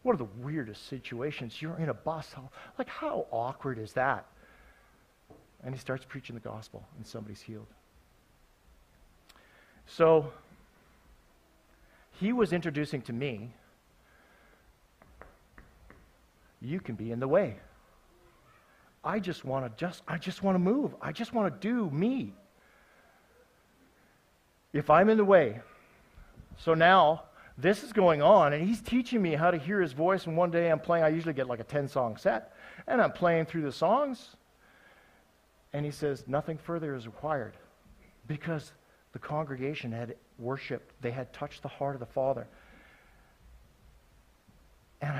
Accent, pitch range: American, 125-165 Hz